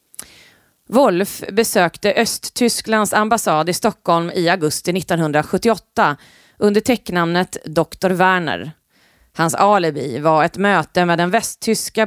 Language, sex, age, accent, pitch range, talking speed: Swedish, female, 30-49, native, 160-205 Hz, 105 wpm